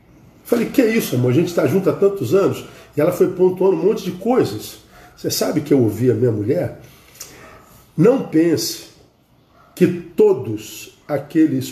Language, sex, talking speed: Portuguese, male, 170 wpm